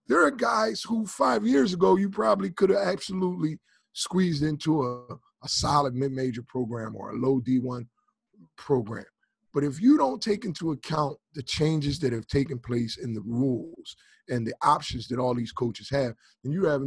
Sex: male